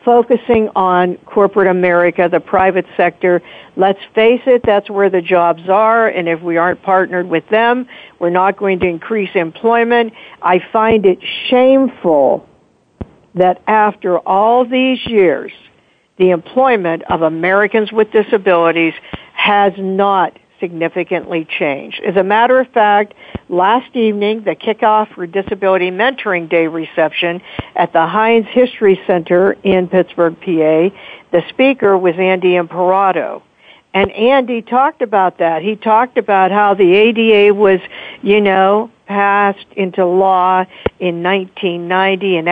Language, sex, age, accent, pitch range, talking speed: English, female, 60-79, American, 180-225 Hz, 130 wpm